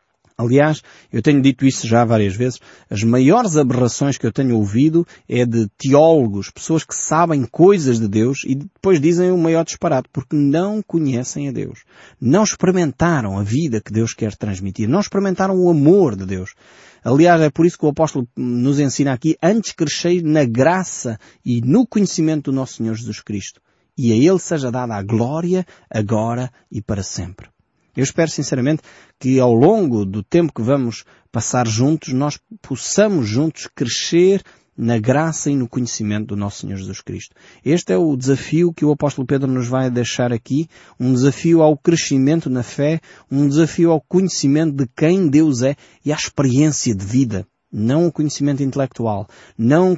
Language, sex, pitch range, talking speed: Portuguese, male, 120-160 Hz, 175 wpm